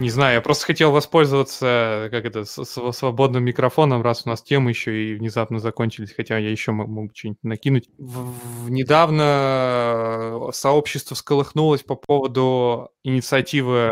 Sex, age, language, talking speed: male, 20-39, Russian, 140 wpm